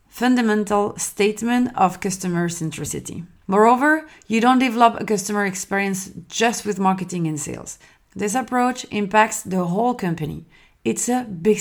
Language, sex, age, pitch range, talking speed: French, female, 30-49, 180-230 Hz, 135 wpm